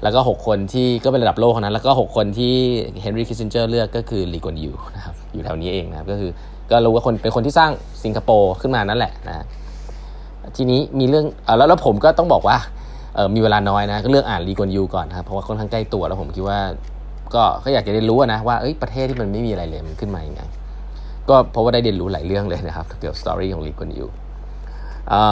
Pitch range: 85-115 Hz